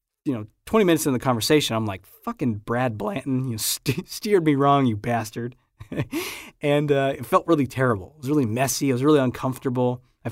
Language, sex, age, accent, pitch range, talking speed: English, male, 20-39, American, 120-160 Hz, 205 wpm